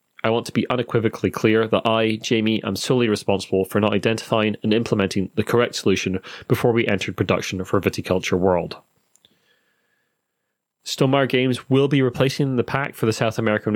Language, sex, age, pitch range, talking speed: English, male, 30-49, 100-120 Hz, 165 wpm